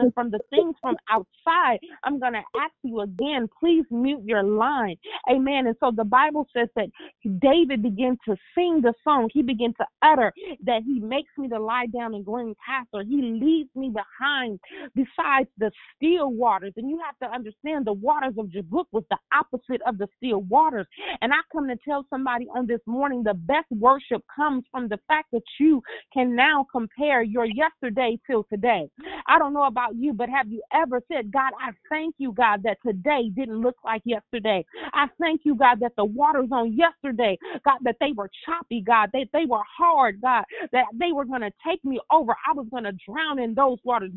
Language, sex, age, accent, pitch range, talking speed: English, female, 30-49, American, 230-295 Hz, 205 wpm